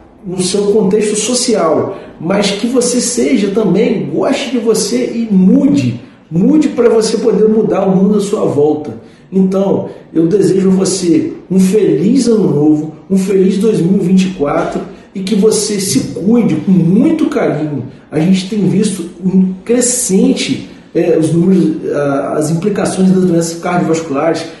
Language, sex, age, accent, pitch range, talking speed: Portuguese, male, 40-59, Brazilian, 185-230 Hz, 130 wpm